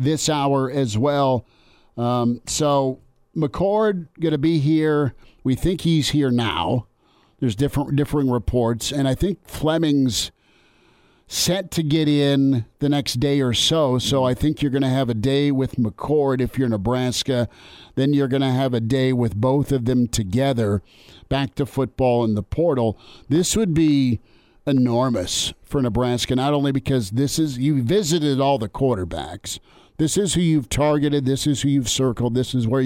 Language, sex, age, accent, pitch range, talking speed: English, male, 50-69, American, 120-145 Hz, 170 wpm